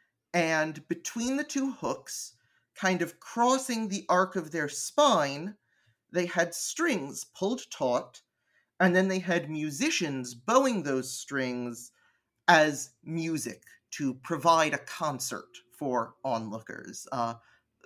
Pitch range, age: 130-180 Hz, 30-49